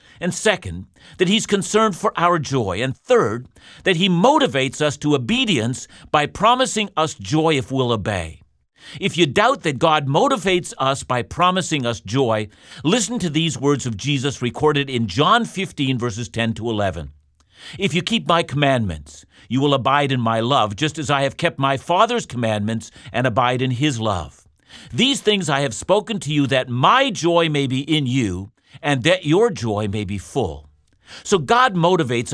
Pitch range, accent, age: 115-175 Hz, American, 50-69